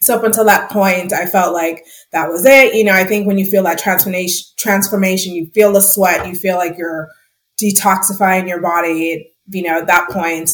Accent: American